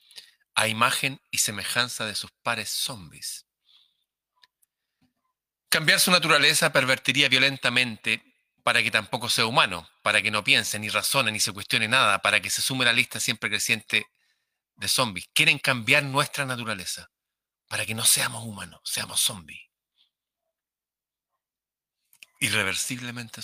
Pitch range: 110-145 Hz